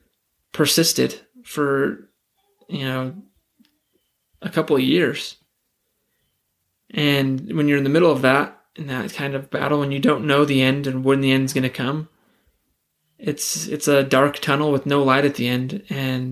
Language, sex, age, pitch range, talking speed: English, male, 20-39, 135-150 Hz, 170 wpm